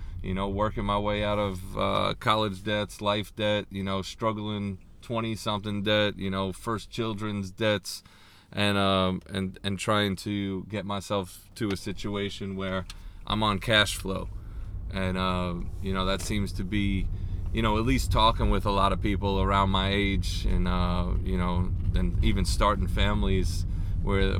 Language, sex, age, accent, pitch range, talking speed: English, male, 30-49, American, 90-105 Hz, 165 wpm